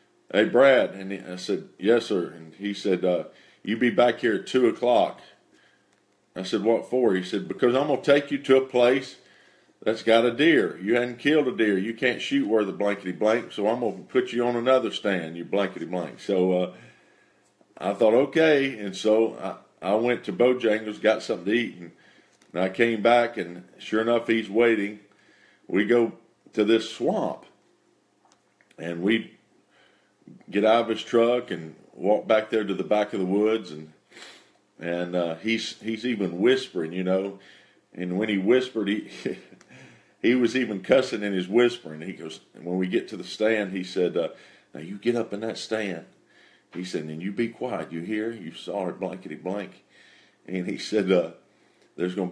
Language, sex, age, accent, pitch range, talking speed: English, male, 50-69, American, 95-115 Hz, 190 wpm